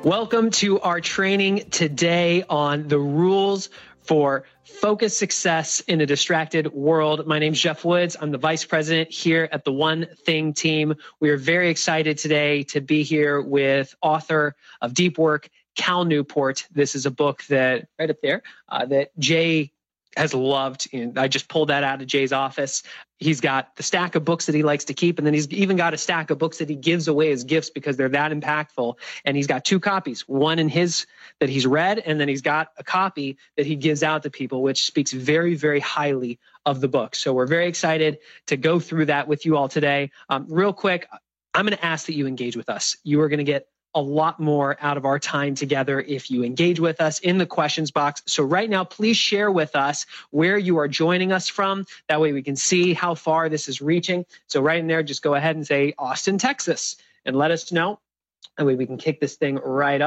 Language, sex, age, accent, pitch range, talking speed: English, male, 20-39, American, 145-170 Hz, 220 wpm